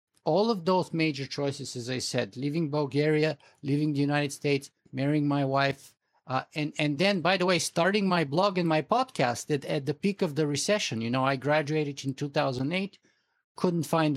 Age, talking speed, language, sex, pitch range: 50-69, 190 wpm, English, male, 140-175 Hz